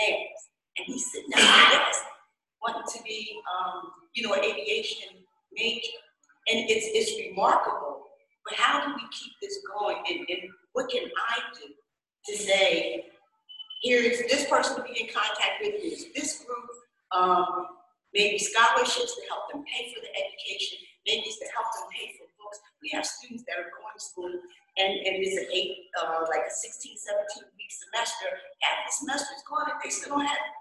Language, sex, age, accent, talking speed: English, female, 40-59, American, 180 wpm